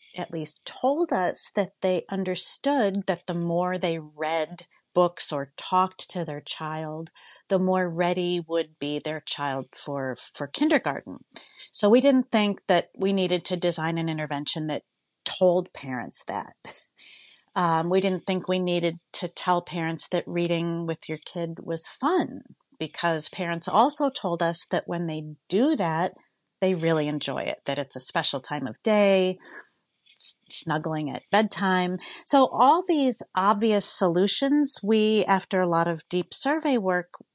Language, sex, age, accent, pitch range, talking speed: English, female, 40-59, American, 165-215 Hz, 155 wpm